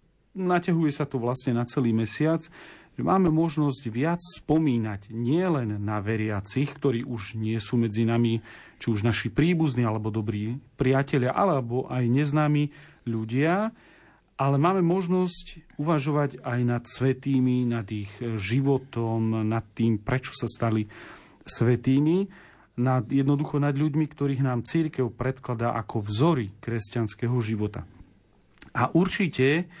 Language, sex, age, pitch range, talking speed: Slovak, male, 40-59, 115-150 Hz, 125 wpm